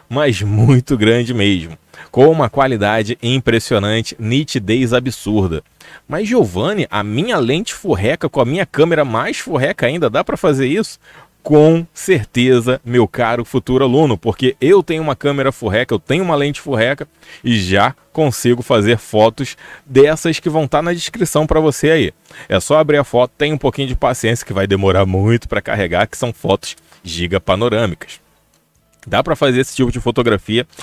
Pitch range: 110-150 Hz